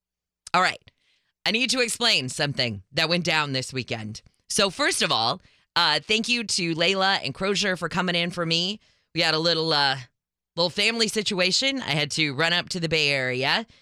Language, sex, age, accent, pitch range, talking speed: English, female, 20-39, American, 150-200 Hz, 195 wpm